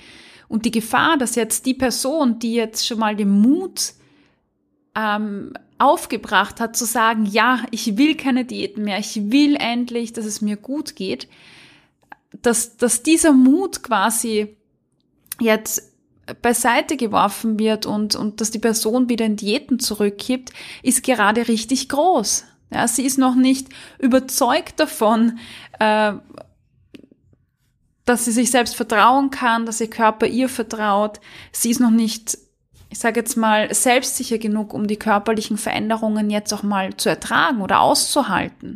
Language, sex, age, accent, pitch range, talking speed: German, female, 20-39, German, 215-255 Hz, 145 wpm